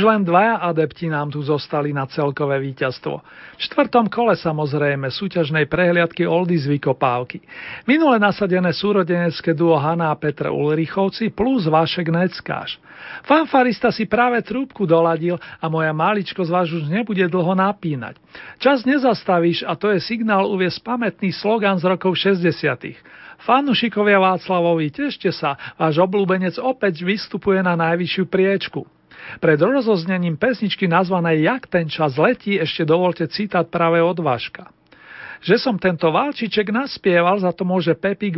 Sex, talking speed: male, 135 wpm